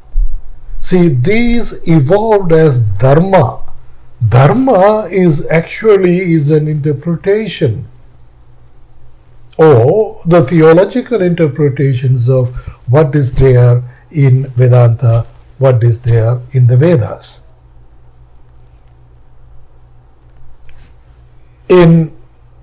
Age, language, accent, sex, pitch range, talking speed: 60-79, English, Indian, male, 110-165 Hz, 70 wpm